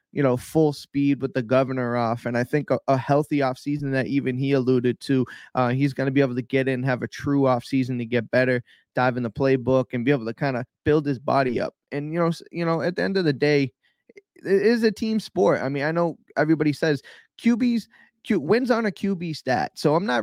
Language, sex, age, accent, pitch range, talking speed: English, male, 20-39, American, 130-160 Hz, 235 wpm